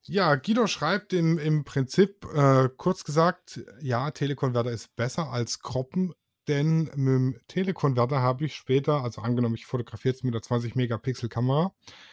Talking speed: 160 wpm